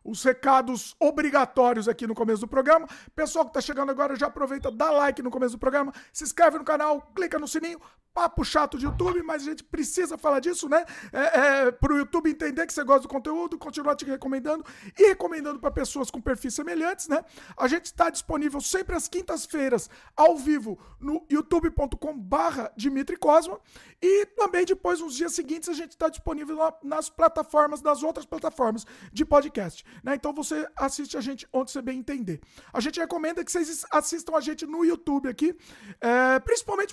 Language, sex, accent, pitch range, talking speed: Portuguese, male, Brazilian, 270-330 Hz, 180 wpm